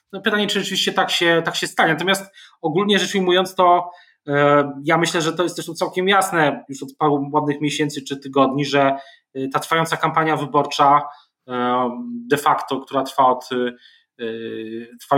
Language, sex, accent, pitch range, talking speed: Polish, male, native, 130-160 Hz, 160 wpm